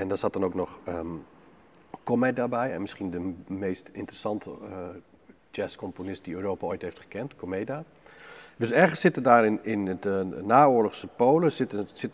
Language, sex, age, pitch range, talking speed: Dutch, male, 40-59, 110-140 Hz, 155 wpm